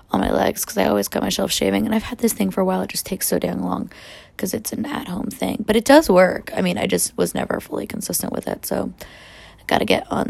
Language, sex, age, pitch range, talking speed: English, female, 20-39, 165-205 Hz, 275 wpm